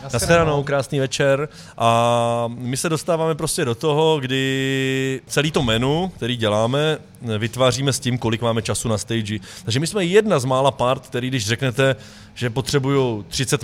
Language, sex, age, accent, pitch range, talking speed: Czech, male, 20-39, native, 110-135 Hz, 165 wpm